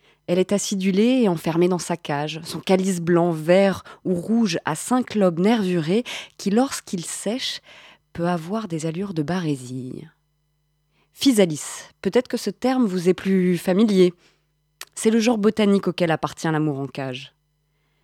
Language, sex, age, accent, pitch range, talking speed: French, female, 20-39, French, 150-205 Hz, 150 wpm